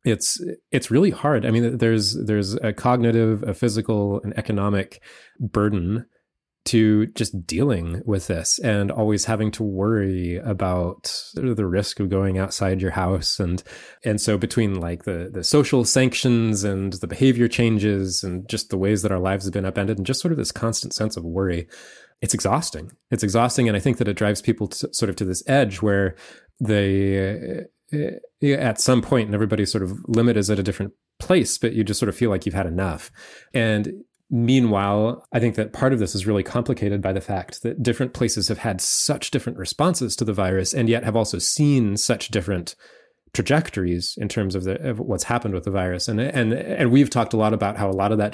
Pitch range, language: 95-120 Hz, English